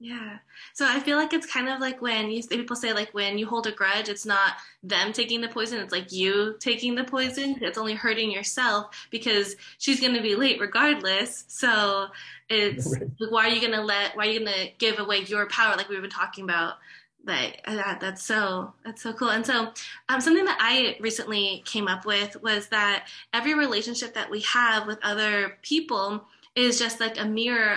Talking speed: 205 wpm